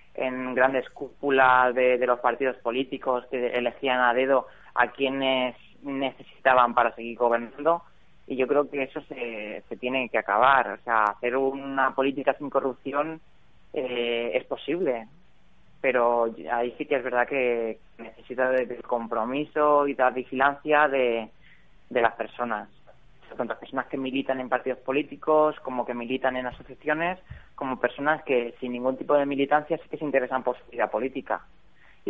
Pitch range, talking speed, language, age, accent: 125-140 Hz, 155 wpm, Spanish, 20-39, Spanish